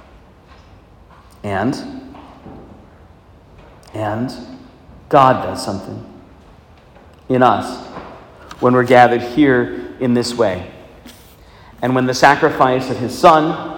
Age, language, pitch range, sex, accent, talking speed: 40-59, English, 95-125 Hz, male, American, 90 wpm